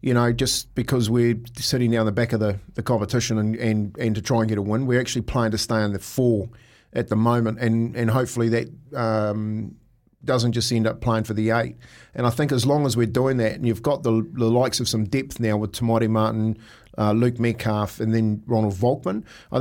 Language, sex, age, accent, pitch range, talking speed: English, male, 50-69, Australian, 110-130 Hz, 235 wpm